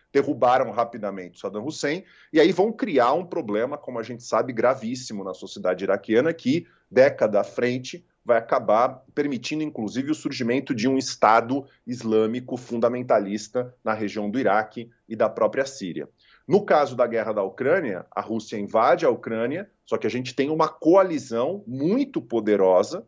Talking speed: 160 wpm